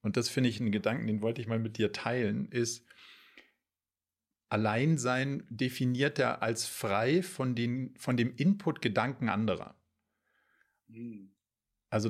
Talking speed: 135 wpm